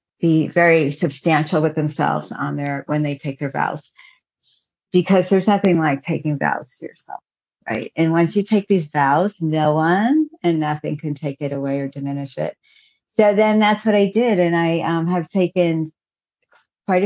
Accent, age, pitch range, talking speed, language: American, 50-69, 145-175 Hz, 175 wpm, English